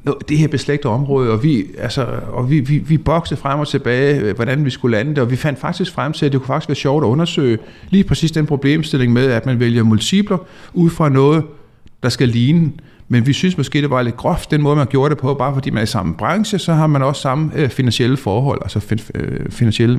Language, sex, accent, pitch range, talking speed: Danish, male, native, 130-165 Hz, 230 wpm